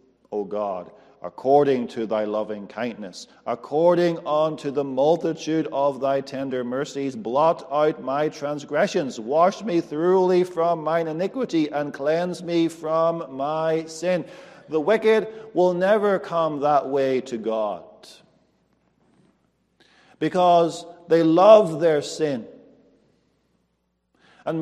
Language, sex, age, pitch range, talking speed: English, male, 50-69, 145-185 Hz, 110 wpm